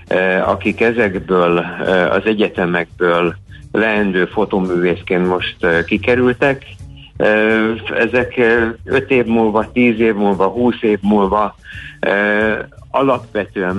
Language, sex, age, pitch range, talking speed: Hungarian, male, 60-79, 95-115 Hz, 85 wpm